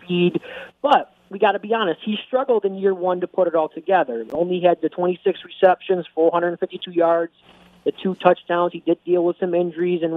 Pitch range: 165-215 Hz